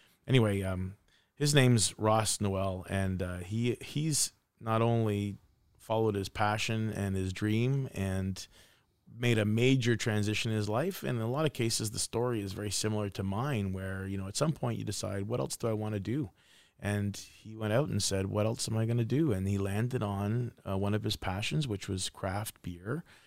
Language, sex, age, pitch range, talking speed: English, male, 30-49, 100-120 Hz, 205 wpm